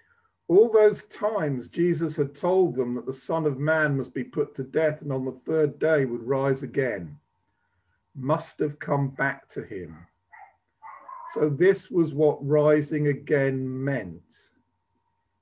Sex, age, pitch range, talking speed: male, 50-69, 130-170 Hz, 150 wpm